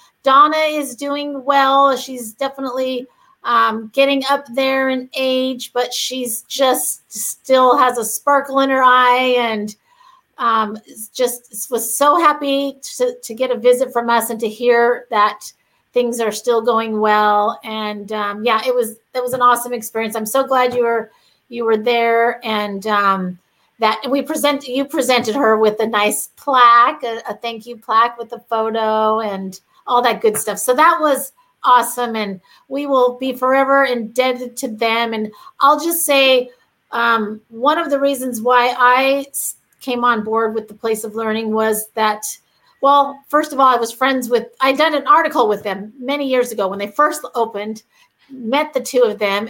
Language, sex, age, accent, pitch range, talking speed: English, female, 40-59, American, 220-270 Hz, 175 wpm